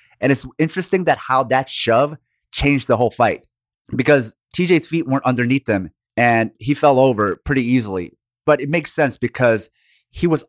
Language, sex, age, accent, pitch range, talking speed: English, male, 30-49, American, 110-140 Hz, 170 wpm